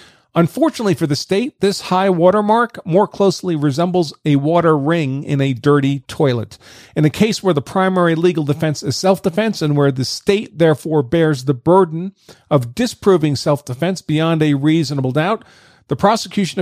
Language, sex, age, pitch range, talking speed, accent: English, male, 40-59, 150-190 Hz, 160 wpm, American